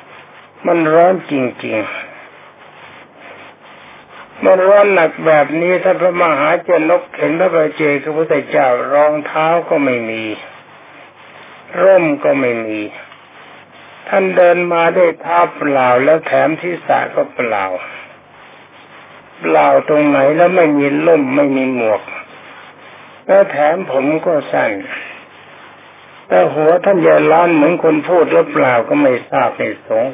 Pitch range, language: 140-175 Hz, Thai